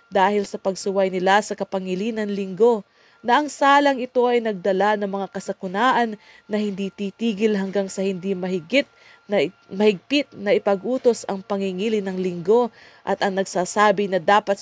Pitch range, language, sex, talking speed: 185-215 Hz, English, female, 150 wpm